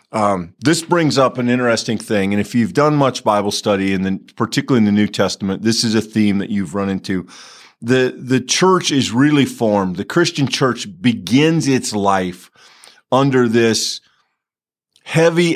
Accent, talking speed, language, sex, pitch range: American, 165 wpm, English, male, 105-130 Hz